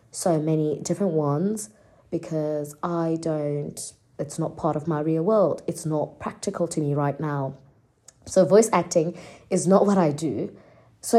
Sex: female